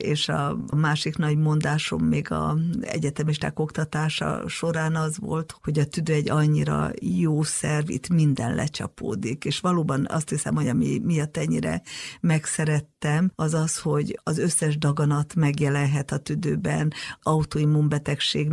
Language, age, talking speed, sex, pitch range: Hungarian, 50-69, 135 wpm, female, 150-165 Hz